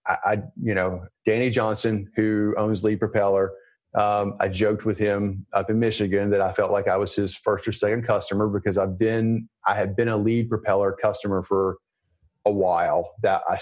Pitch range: 95-115 Hz